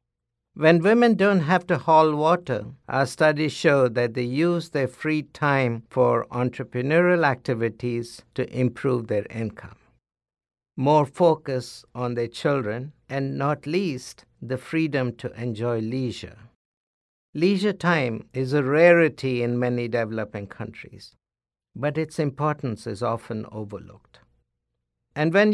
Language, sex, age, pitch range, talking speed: English, male, 60-79, 115-155 Hz, 125 wpm